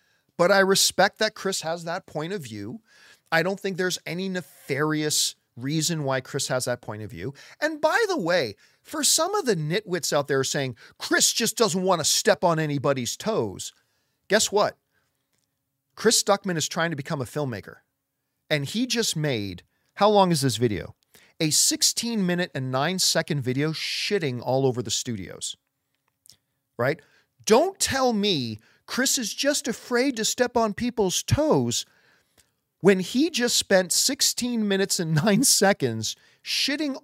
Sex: male